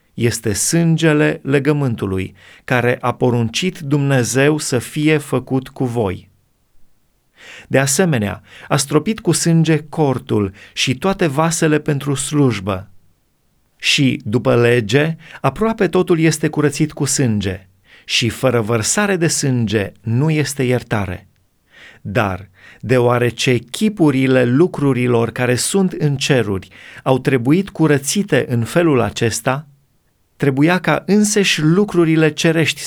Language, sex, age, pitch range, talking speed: Romanian, male, 30-49, 120-155 Hz, 110 wpm